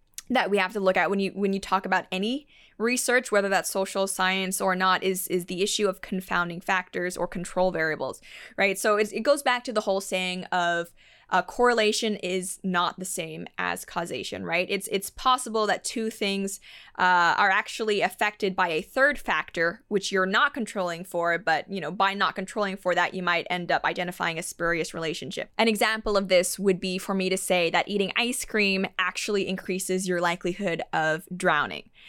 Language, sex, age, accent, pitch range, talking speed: English, female, 20-39, American, 185-220 Hz, 195 wpm